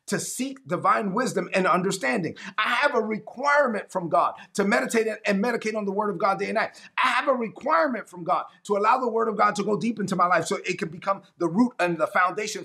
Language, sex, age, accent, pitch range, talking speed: English, male, 30-49, American, 195-260 Hz, 240 wpm